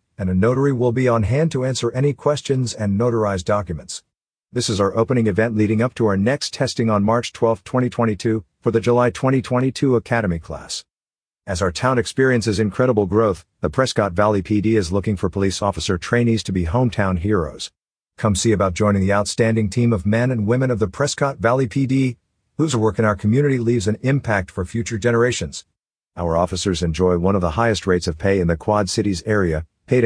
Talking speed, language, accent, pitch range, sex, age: 195 wpm, English, American, 95-120 Hz, male, 50-69